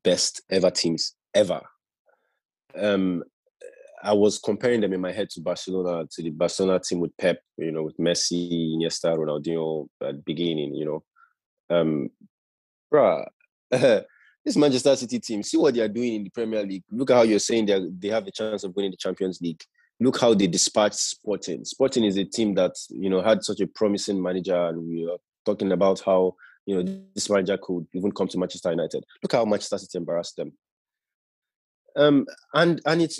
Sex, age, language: male, 20-39, English